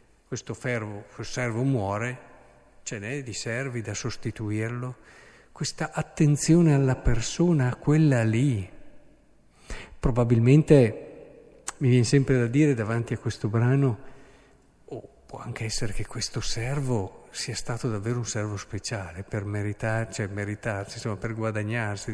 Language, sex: Italian, male